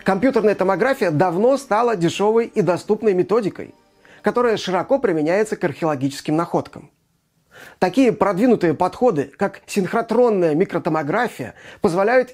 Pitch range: 170-225 Hz